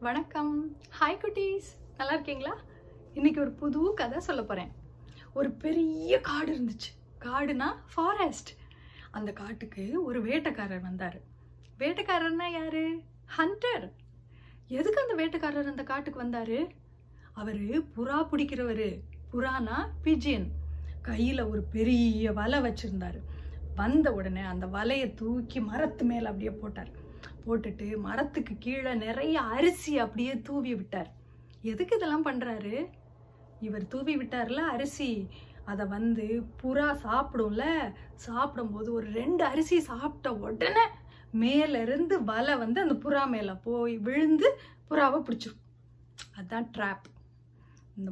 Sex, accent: female, native